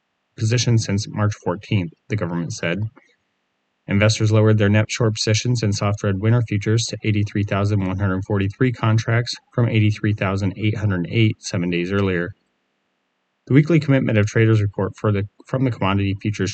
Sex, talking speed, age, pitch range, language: male, 130 wpm, 30-49, 95-110 Hz, English